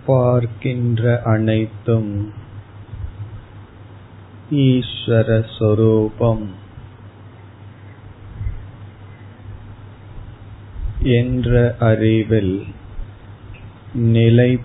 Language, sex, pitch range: Tamil, male, 100-110 Hz